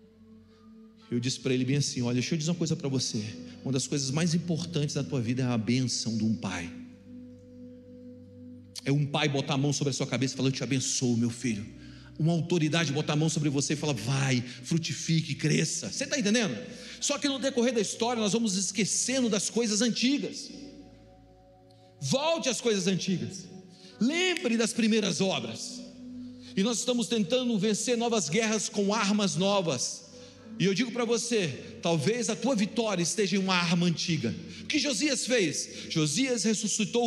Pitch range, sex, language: 150-225 Hz, male, Portuguese